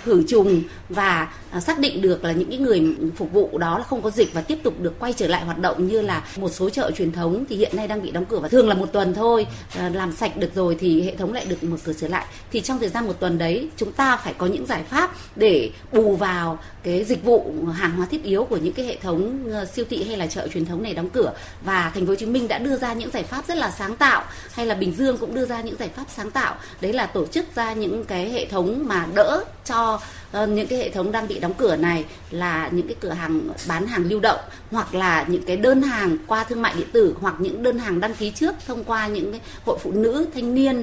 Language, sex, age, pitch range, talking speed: Vietnamese, female, 20-39, 180-255 Hz, 265 wpm